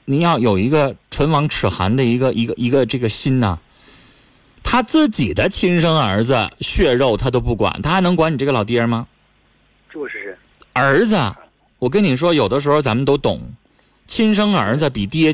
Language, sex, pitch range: Chinese, male, 105-145 Hz